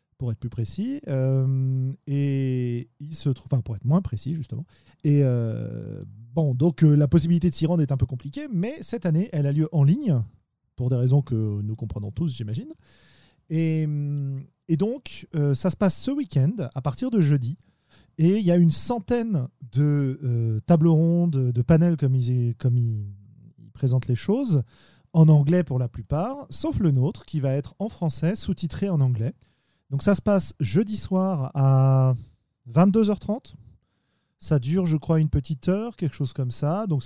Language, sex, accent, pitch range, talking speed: French, male, French, 120-165 Hz, 185 wpm